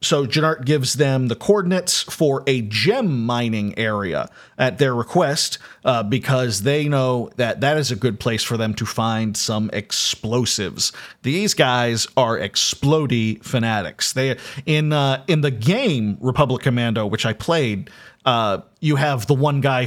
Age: 40-59